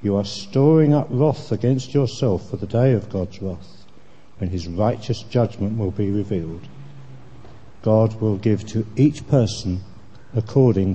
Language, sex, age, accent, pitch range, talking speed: English, male, 60-79, British, 100-125 Hz, 150 wpm